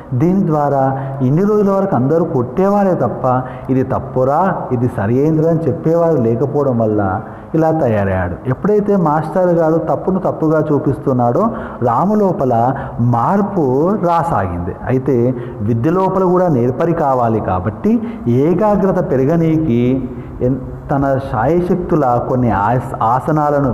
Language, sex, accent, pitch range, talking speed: Telugu, male, native, 125-175 Hz, 100 wpm